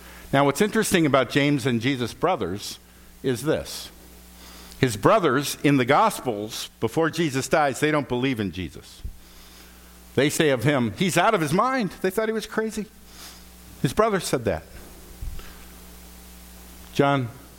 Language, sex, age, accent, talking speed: English, male, 60-79, American, 145 wpm